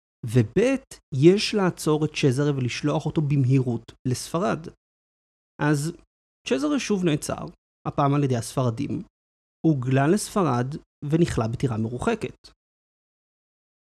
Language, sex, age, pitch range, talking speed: Hebrew, male, 30-49, 120-160 Hz, 95 wpm